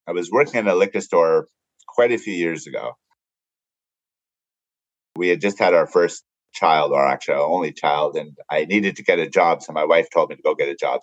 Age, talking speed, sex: 30-49, 225 wpm, male